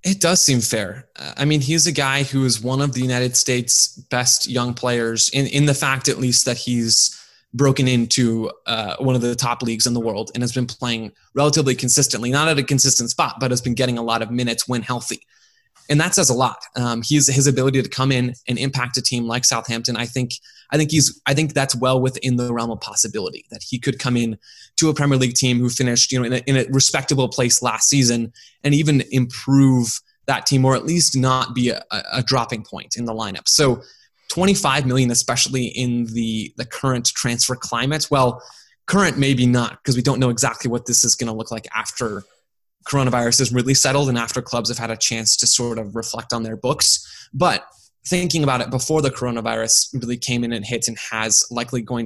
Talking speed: 220 wpm